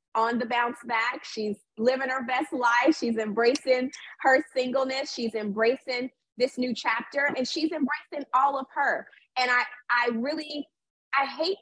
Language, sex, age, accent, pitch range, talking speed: English, female, 30-49, American, 210-255 Hz, 155 wpm